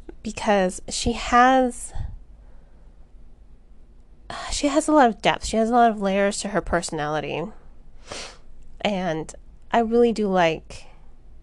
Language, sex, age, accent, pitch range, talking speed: English, female, 20-39, American, 200-245 Hz, 120 wpm